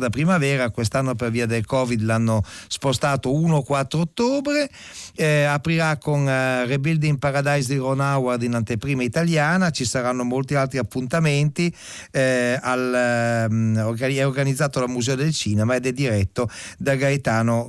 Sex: male